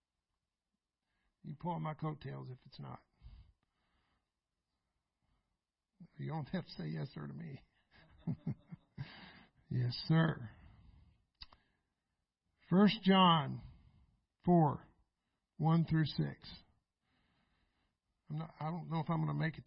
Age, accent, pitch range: 60-79, American, 130-175 Hz